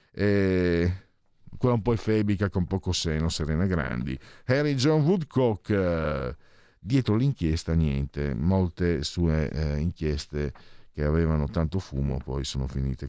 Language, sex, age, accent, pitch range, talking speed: Italian, male, 50-69, native, 85-125 Hz, 125 wpm